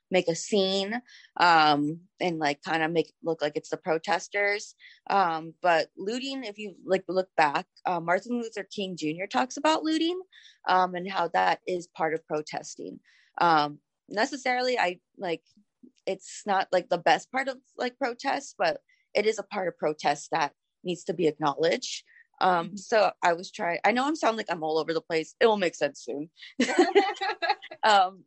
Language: English